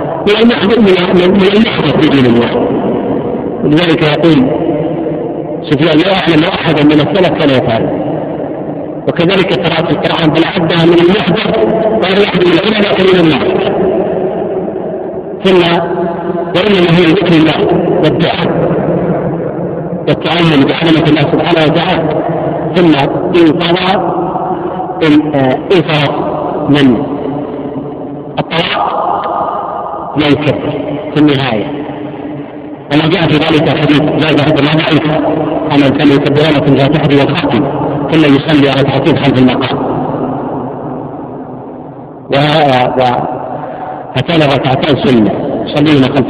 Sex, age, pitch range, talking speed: male, 50-69, 145-170 Hz, 70 wpm